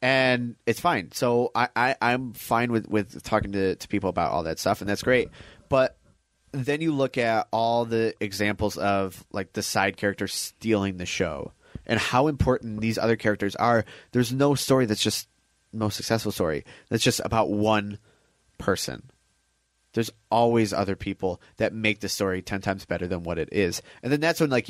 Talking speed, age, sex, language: 190 wpm, 30-49, male, English